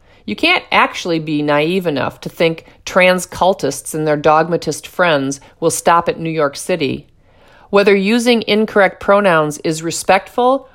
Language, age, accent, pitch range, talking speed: English, 50-69, American, 155-200 Hz, 145 wpm